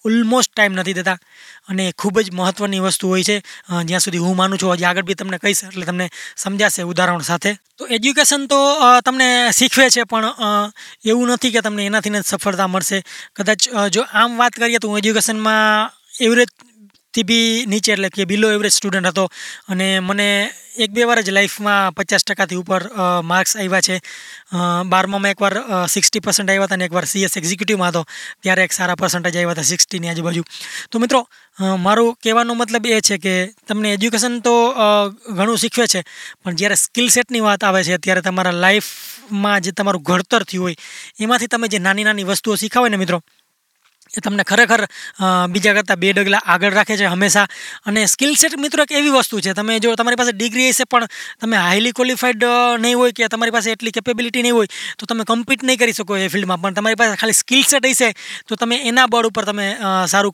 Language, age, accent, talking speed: Gujarati, 20-39, native, 185 wpm